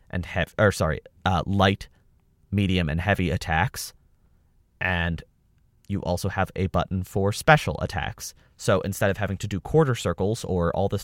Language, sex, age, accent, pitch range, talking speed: English, male, 30-49, American, 90-110 Hz, 165 wpm